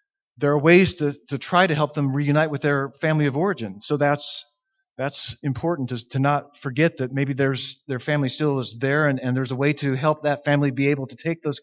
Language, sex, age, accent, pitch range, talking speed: English, male, 40-59, American, 125-145 Hz, 225 wpm